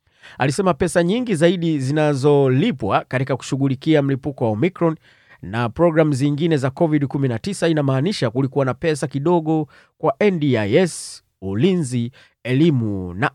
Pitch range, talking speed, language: 125-155 Hz, 110 wpm, Swahili